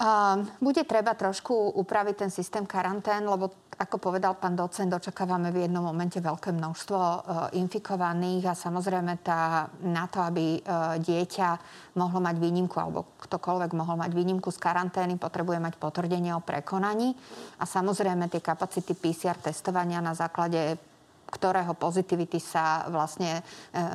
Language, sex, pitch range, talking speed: Slovak, female, 165-185 Hz, 135 wpm